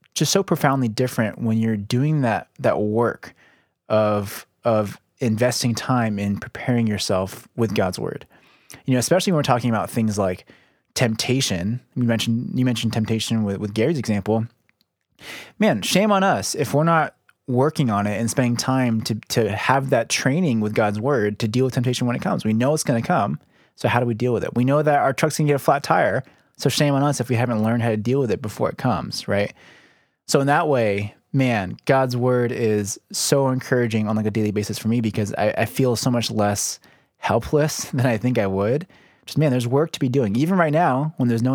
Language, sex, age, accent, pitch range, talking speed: English, male, 20-39, American, 110-135 Hz, 215 wpm